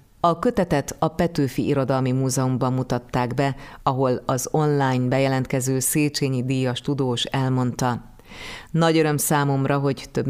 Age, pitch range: 30-49, 130-145 Hz